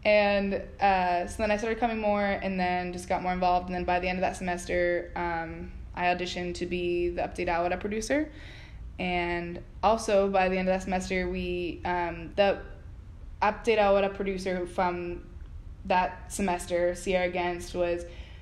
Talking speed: 165 wpm